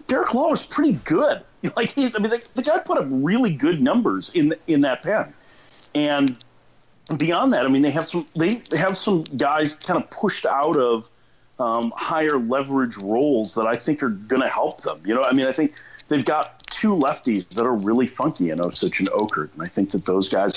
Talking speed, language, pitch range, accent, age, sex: 225 wpm, English, 110-175 Hz, American, 40-59, male